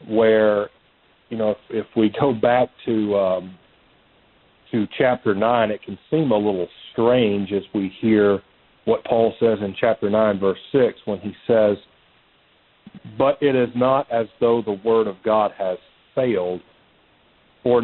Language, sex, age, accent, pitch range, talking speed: English, male, 40-59, American, 100-120 Hz, 155 wpm